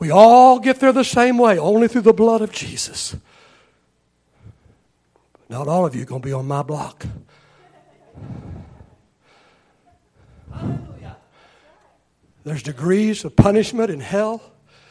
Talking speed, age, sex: 120 wpm, 60-79, male